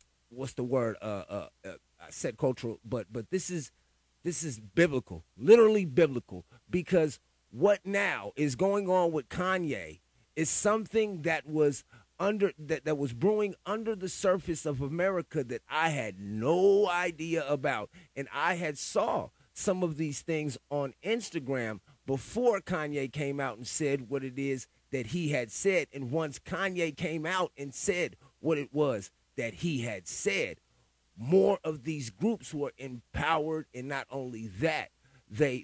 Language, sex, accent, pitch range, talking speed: English, male, American, 130-170 Hz, 160 wpm